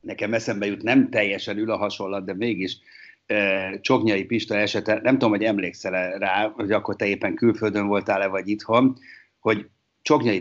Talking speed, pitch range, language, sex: 160 wpm, 95-110 Hz, Hungarian, male